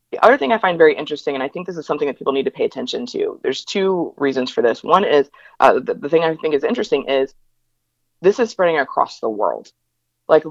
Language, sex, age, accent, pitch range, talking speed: English, female, 20-39, American, 135-180 Hz, 245 wpm